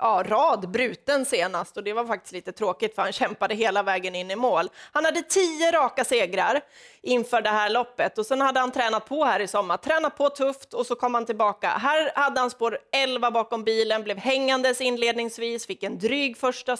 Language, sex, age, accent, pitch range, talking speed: Swedish, female, 30-49, native, 205-260 Hz, 205 wpm